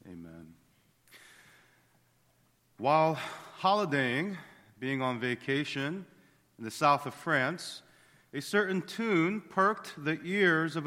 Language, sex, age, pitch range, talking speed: English, male, 40-59, 115-160 Hz, 100 wpm